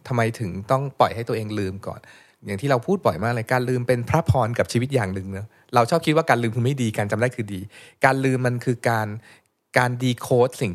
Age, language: 20-39, Thai